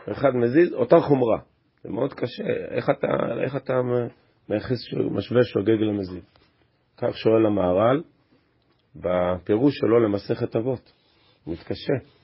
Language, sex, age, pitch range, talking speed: Hebrew, male, 40-59, 95-125 Hz, 125 wpm